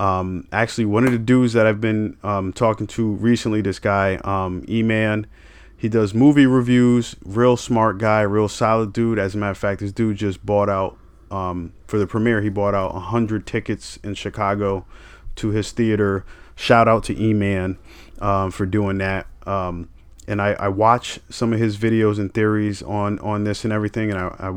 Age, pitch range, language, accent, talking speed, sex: 30-49, 90-110 Hz, English, American, 190 wpm, male